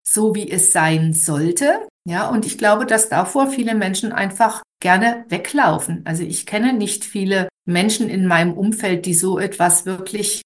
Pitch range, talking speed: 180-235 Hz, 165 wpm